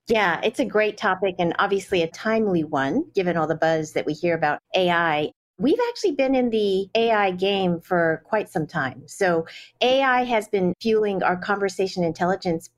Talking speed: 180 wpm